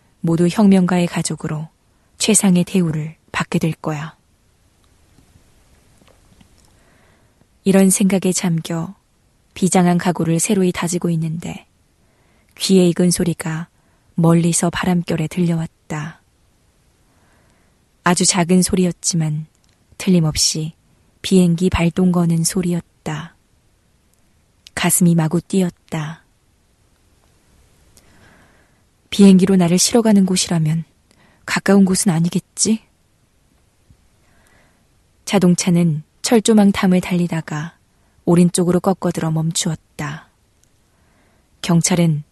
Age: 20-39